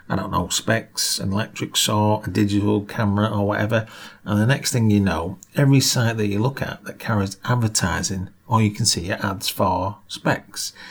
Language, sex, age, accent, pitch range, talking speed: English, male, 40-59, British, 100-130 Hz, 195 wpm